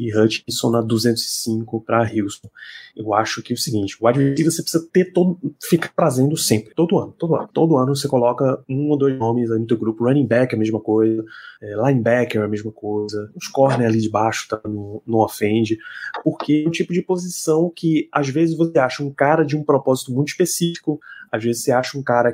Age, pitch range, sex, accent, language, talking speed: 20-39, 120-180 Hz, male, Brazilian, Portuguese, 215 wpm